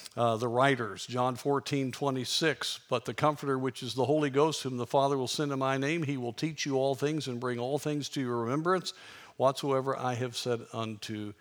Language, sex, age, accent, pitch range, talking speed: English, male, 50-69, American, 120-145 Hz, 215 wpm